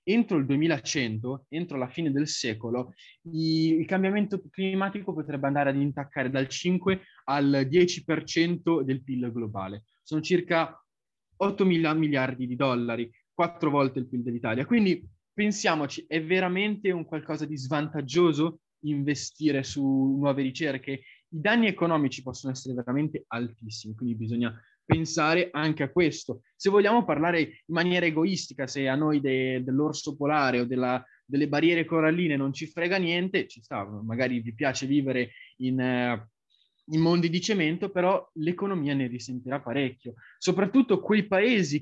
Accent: native